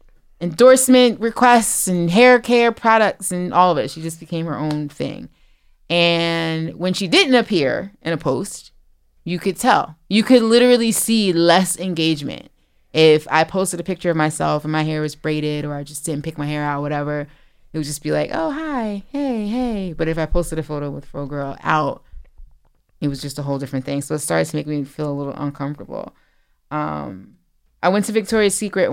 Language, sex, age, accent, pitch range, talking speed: English, female, 20-39, American, 150-210 Hz, 200 wpm